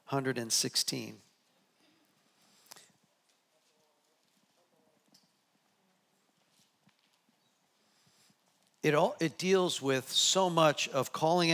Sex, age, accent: male, 50-69, American